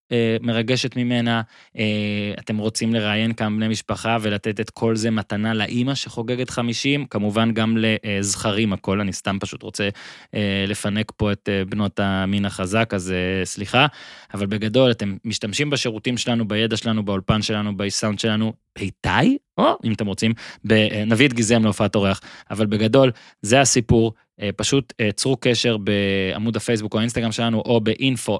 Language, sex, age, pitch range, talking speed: Hebrew, male, 20-39, 105-120 Hz, 140 wpm